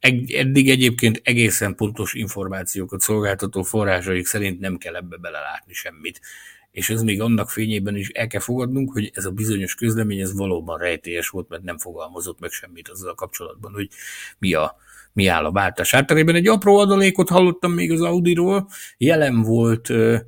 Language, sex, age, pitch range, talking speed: Hungarian, male, 50-69, 95-110 Hz, 170 wpm